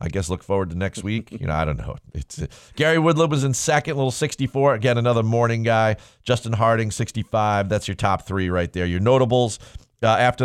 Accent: American